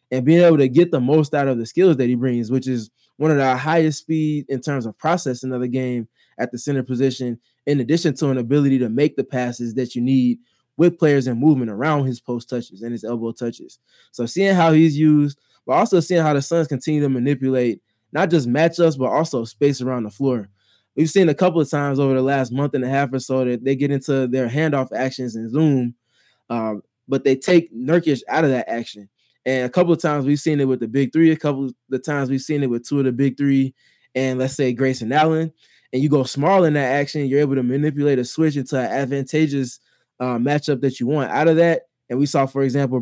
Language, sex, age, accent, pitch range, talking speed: English, male, 20-39, American, 125-150 Hz, 240 wpm